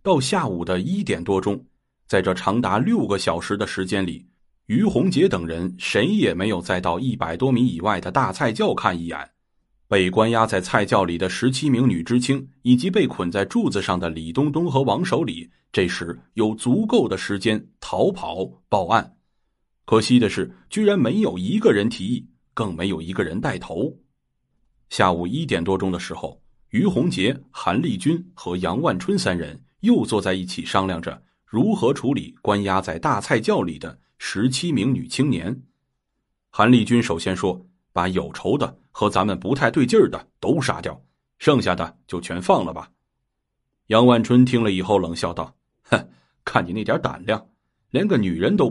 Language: Chinese